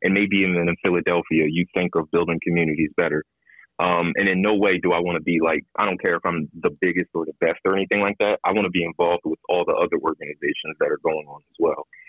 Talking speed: 260 wpm